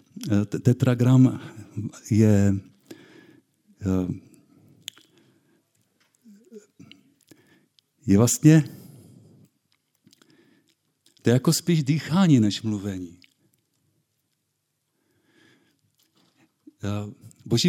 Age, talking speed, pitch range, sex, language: 50-69, 40 wpm, 110-140 Hz, male, Czech